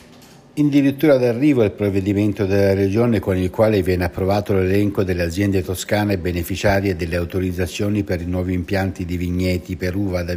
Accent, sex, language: native, male, Italian